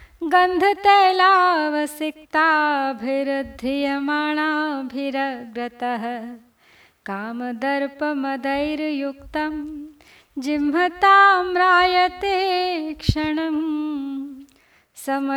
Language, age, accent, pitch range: Hindi, 20-39, native, 270-350 Hz